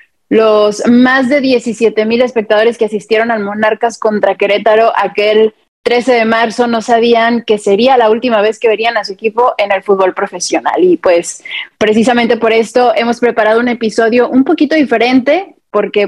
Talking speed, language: 165 wpm, Spanish